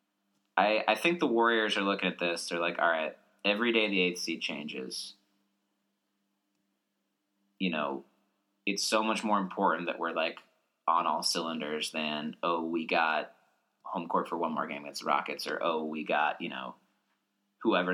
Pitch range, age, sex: 95-105 Hz, 20-39, male